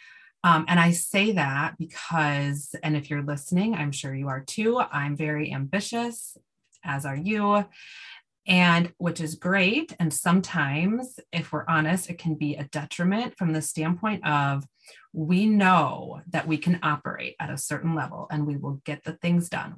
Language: English